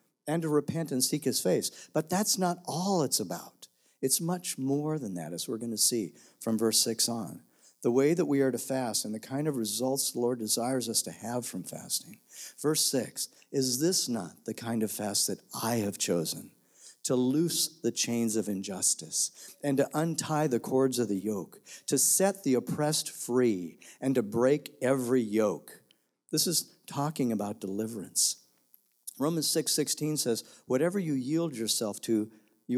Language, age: English, 50-69